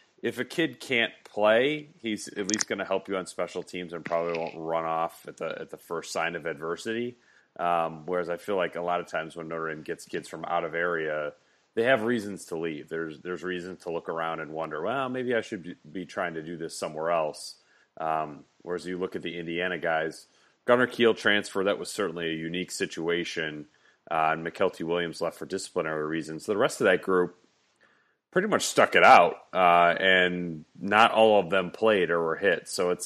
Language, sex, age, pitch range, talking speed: English, male, 30-49, 85-105 Hz, 215 wpm